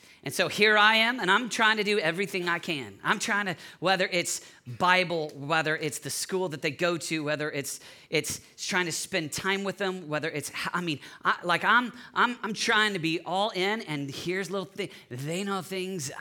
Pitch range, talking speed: 140-190 Hz, 210 wpm